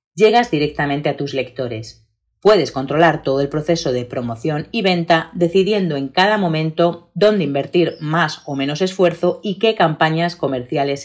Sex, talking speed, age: female, 150 wpm, 30-49